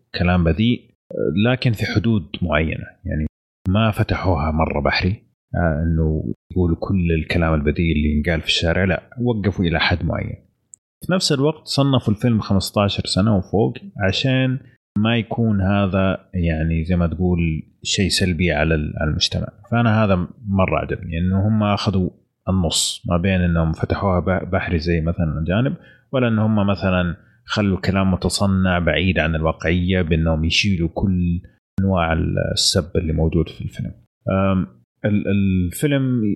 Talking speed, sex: 135 wpm, male